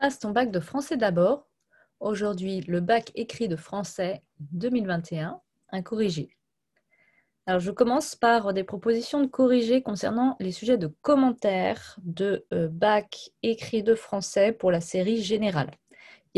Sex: female